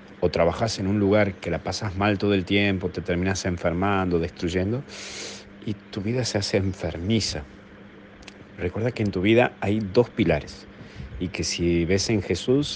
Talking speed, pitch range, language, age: 170 wpm, 90-115 Hz, Spanish, 40-59